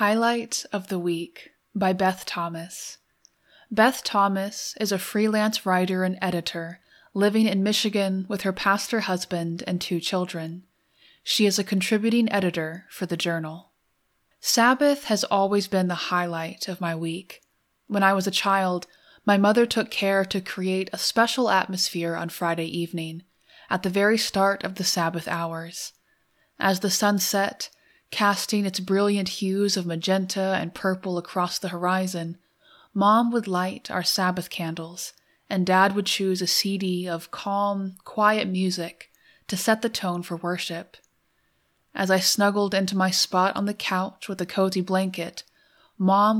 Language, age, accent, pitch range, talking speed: English, 20-39, American, 175-205 Hz, 155 wpm